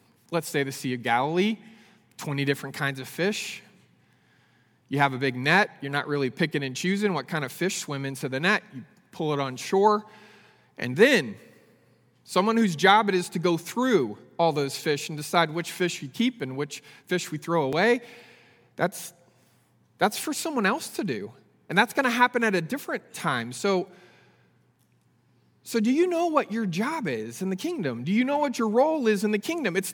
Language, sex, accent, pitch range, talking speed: English, male, American, 155-225 Hz, 200 wpm